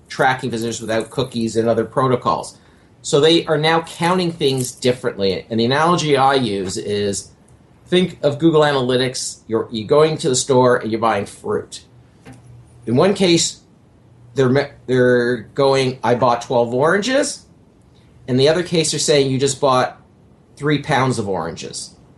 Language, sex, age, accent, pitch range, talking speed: English, male, 40-59, American, 120-155 Hz, 155 wpm